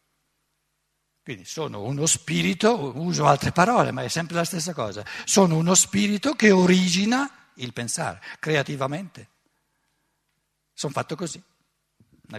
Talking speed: 120 wpm